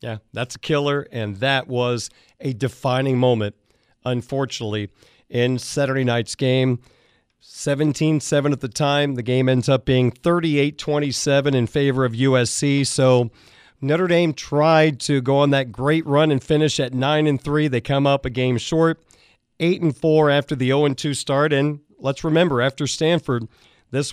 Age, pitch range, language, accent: 40-59, 130-150 Hz, English, American